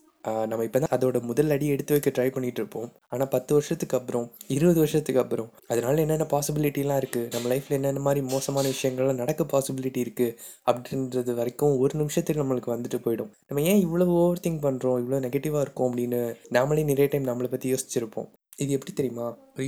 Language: Tamil